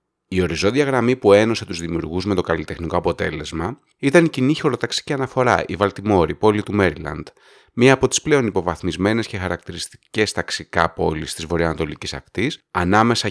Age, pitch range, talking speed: 30-49, 85-125 Hz, 155 wpm